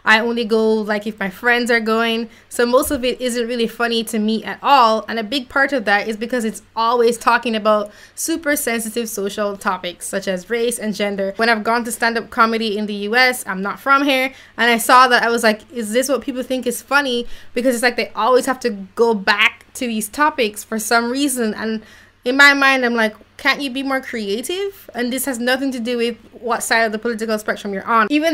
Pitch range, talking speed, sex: 215-250 Hz, 235 wpm, female